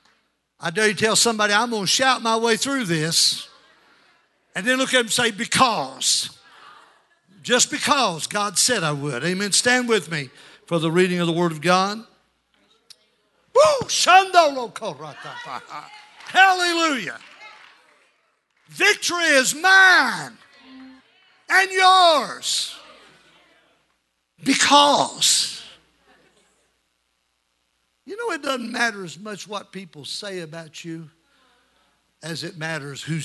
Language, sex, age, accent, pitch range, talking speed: English, male, 60-79, American, 145-235 Hz, 115 wpm